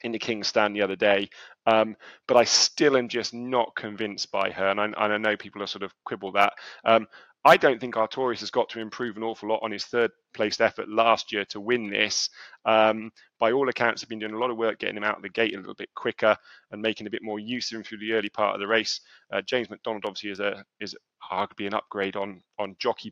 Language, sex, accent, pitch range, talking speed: English, male, British, 105-115 Hz, 260 wpm